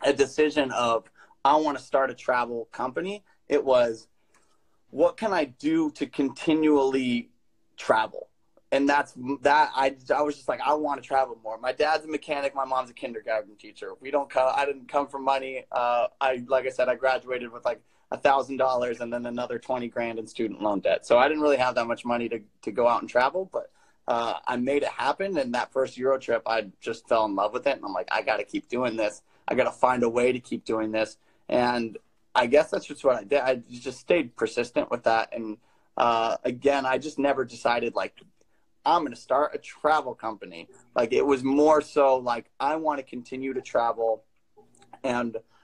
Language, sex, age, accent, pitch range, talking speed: English, male, 30-49, American, 120-140 Hz, 210 wpm